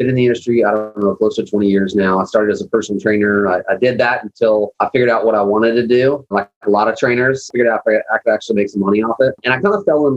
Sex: male